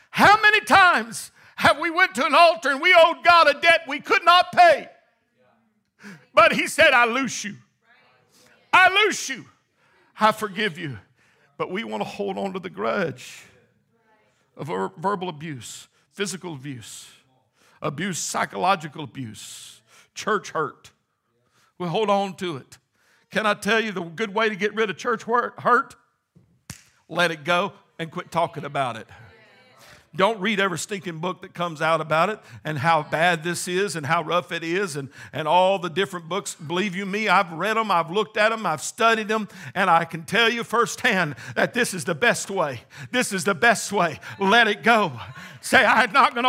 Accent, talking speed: American, 180 wpm